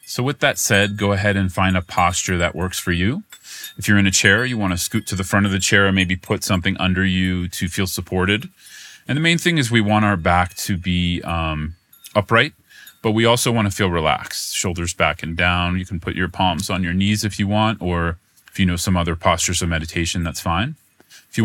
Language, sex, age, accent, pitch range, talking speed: English, male, 30-49, American, 85-105 Hz, 240 wpm